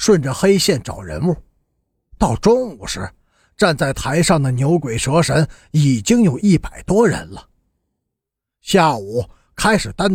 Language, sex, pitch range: Chinese, male, 140-210 Hz